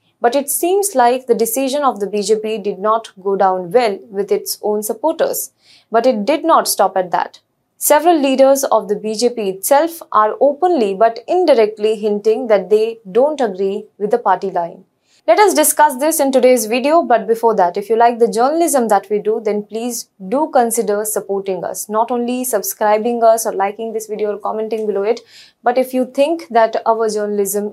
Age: 20-39